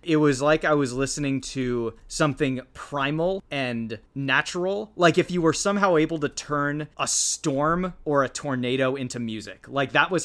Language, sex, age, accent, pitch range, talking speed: English, male, 30-49, American, 125-155 Hz, 170 wpm